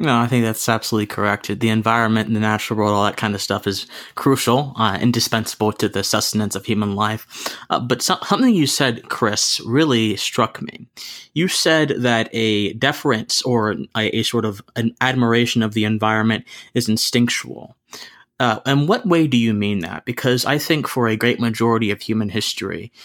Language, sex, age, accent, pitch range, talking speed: English, male, 20-39, American, 110-125 Hz, 185 wpm